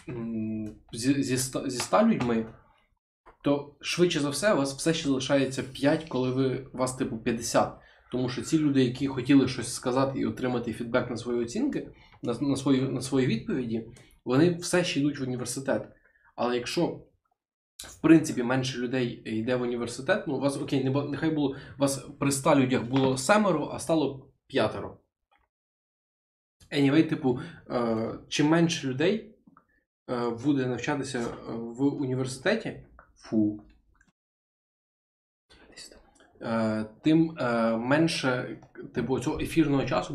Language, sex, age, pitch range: Ukrainian, male, 20-39, 120-145 Hz